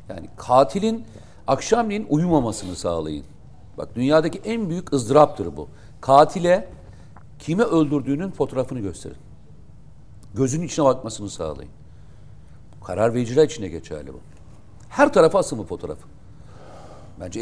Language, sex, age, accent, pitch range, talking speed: Turkish, male, 60-79, native, 105-160 Hz, 105 wpm